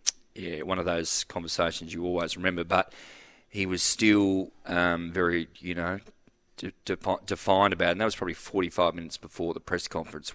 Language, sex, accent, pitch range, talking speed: English, male, Australian, 85-105 Hz, 180 wpm